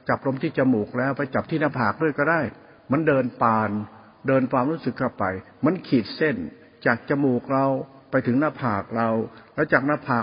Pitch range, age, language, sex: 120-145 Hz, 60-79, Thai, male